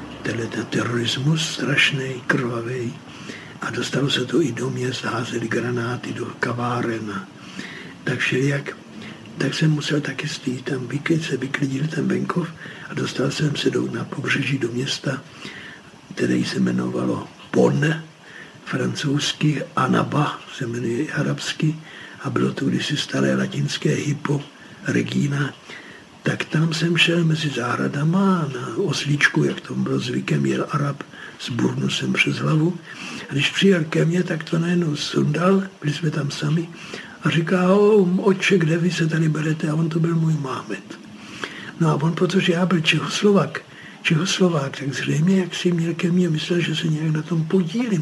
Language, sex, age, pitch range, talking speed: Czech, male, 60-79, 130-170 Hz, 150 wpm